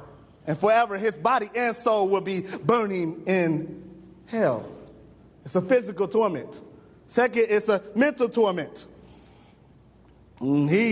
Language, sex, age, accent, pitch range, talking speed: English, male, 30-49, American, 210-285 Hz, 115 wpm